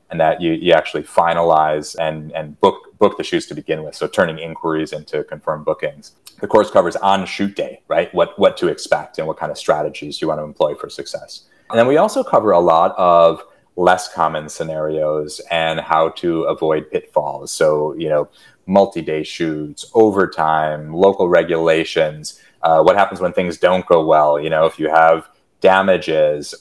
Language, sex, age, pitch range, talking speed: English, male, 30-49, 75-95 Hz, 185 wpm